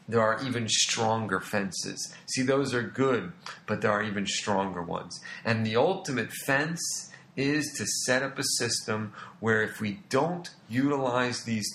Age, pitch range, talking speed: 40-59, 105-135 Hz, 160 wpm